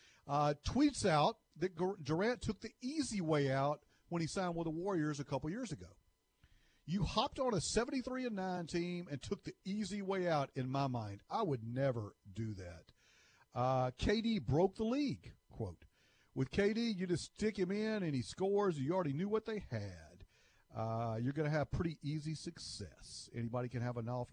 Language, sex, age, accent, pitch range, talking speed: English, male, 50-69, American, 120-205 Hz, 190 wpm